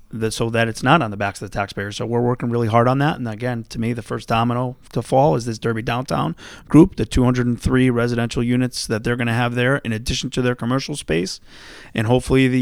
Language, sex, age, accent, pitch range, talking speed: English, male, 30-49, American, 110-125 Hz, 240 wpm